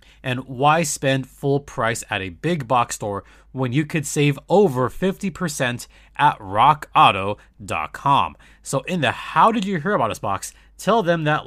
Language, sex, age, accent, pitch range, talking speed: English, male, 30-49, American, 105-150 Hz, 160 wpm